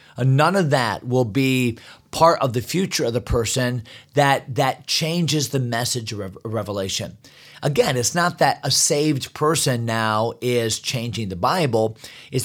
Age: 40-59